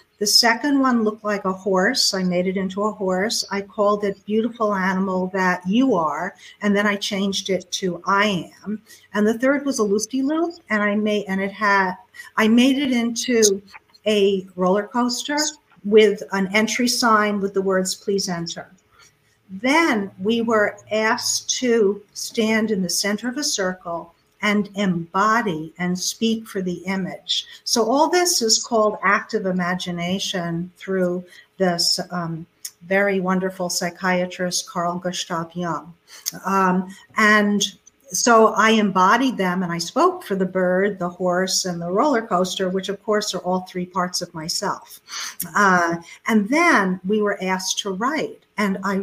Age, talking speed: 50-69, 160 wpm